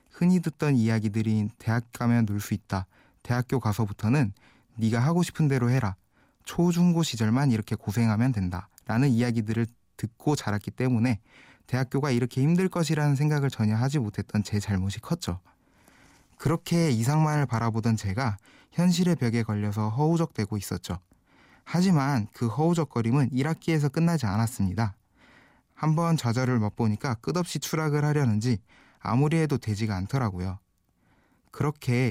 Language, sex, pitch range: Korean, male, 105-140 Hz